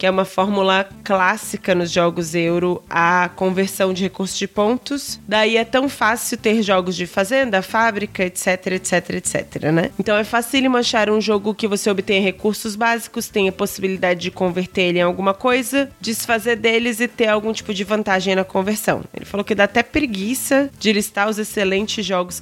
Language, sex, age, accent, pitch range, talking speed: Portuguese, female, 20-39, Brazilian, 180-215 Hz, 180 wpm